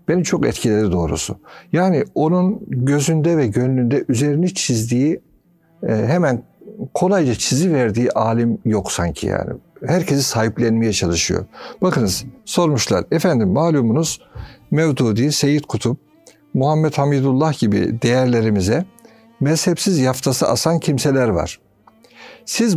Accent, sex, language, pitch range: native, male, Turkish, 120-180 Hz